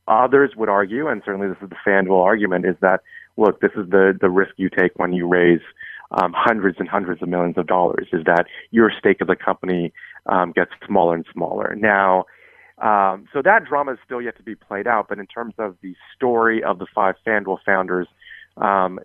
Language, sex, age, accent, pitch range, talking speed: English, male, 30-49, American, 90-105 Hz, 210 wpm